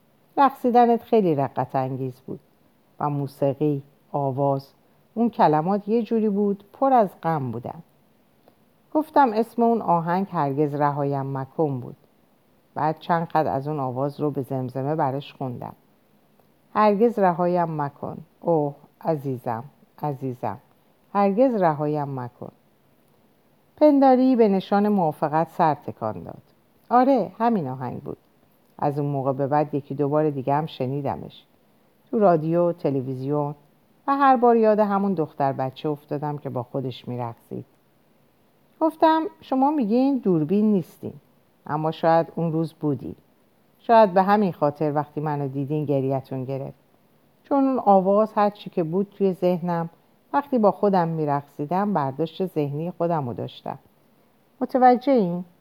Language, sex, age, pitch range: Persian, female, 50-69, 140-205 Hz